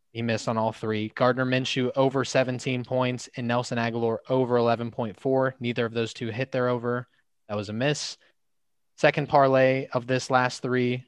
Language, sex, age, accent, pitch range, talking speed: English, male, 20-39, American, 110-130 Hz, 175 wpm